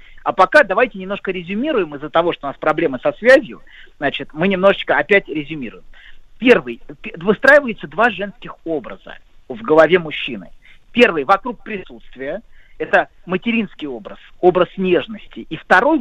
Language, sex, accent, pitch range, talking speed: Russian, male, native, 175-230 Hz, 135 wpm